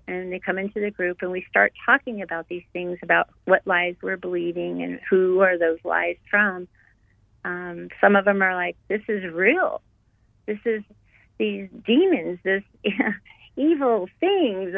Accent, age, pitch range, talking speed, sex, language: American, 40-59, 155-205 Hz, 165 wpm, female, English